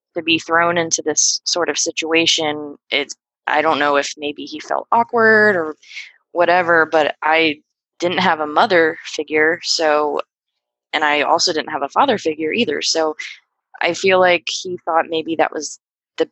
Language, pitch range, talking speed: English, 145-165 Hz, 170 wpm